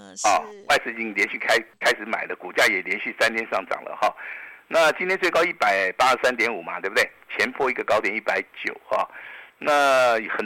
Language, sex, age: Chinese, male, 50-69